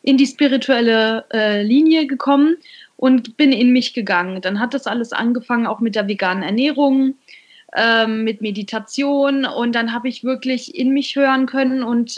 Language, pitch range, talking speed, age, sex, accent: German, 225-270 Hz, 170 wpm, 20-39, female, German